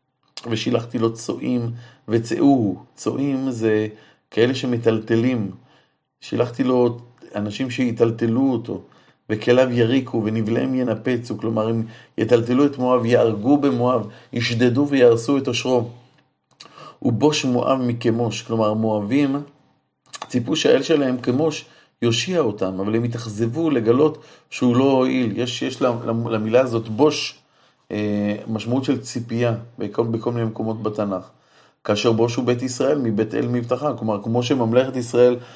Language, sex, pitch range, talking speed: Hebrew, male, 110-130 Hz, 120 wpm